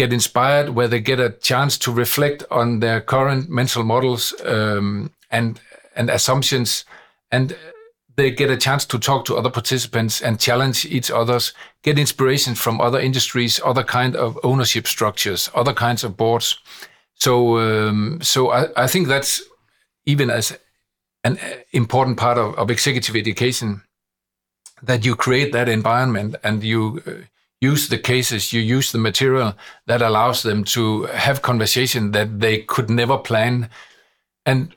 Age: 50-69